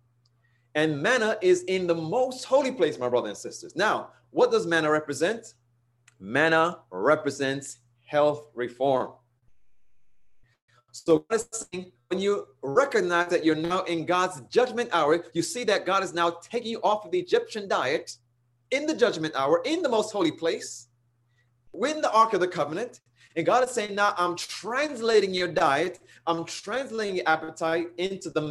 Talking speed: 160 wpm